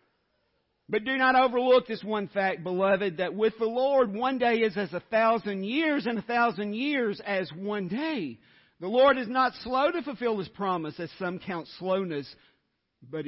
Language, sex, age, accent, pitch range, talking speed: English, male, 50-69, American, 165-255 Hz, 180 wpm